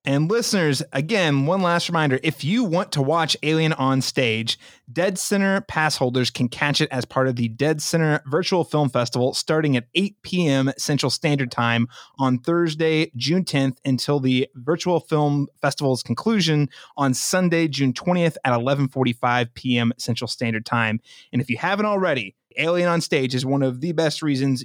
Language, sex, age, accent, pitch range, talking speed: English, male, 30-49, American, 125-160 Hz, 170 wpm